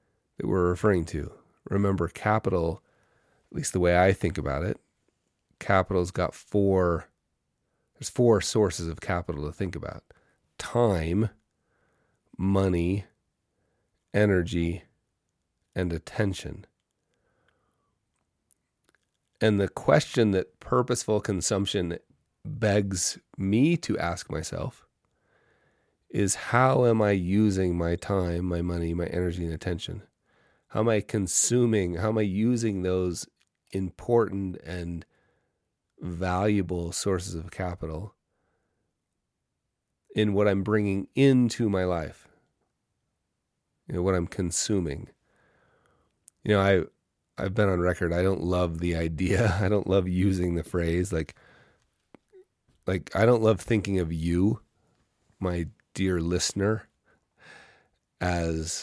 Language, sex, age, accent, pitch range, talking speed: English, male, 30-49, American, 85-105 Hz, 110 wpm